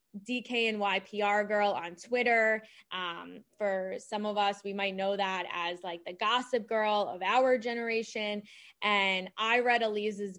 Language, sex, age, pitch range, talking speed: English, female, 20-39, 195-220 Hz, 145 wpm